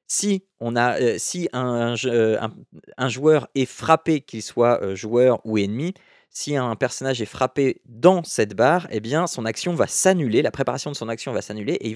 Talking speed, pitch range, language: 190 wpm, 110-155 Hz, French